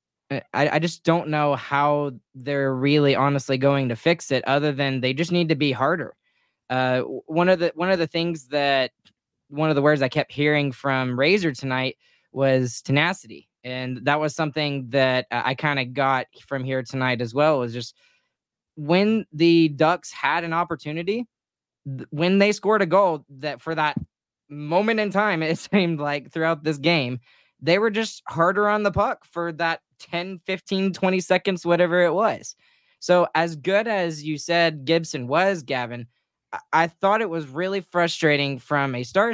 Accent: American